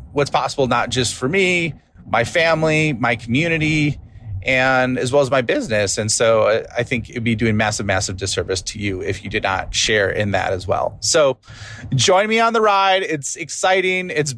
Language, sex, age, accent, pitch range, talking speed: English, male, 30-49, American, 110-145 Hz, 190 wpm